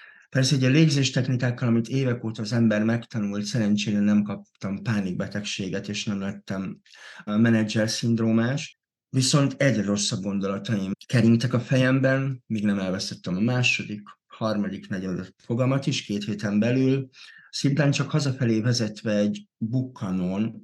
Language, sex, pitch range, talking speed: Hungarian, male, 100-130 Hz, 130 wpm